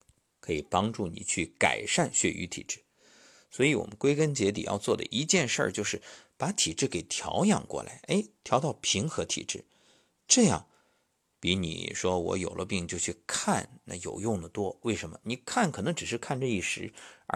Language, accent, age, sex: Chinese, native, 50-69, male